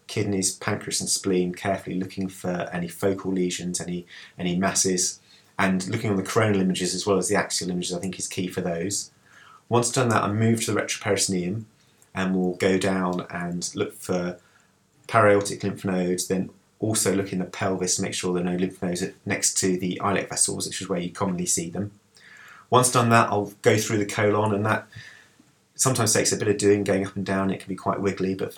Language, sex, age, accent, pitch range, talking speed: English, male, 30-49, British, 95-100 Hz, 215 wpm